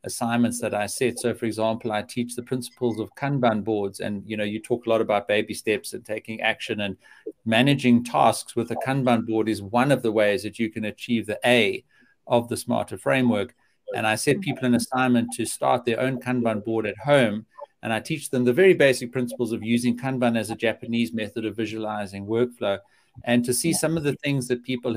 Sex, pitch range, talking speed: male, 115-130 Hz, 215 wpm